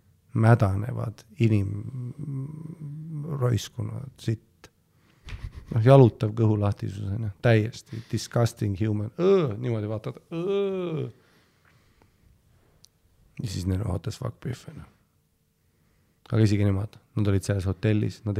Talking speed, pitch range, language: 95 wpm, 105-125 Hz, English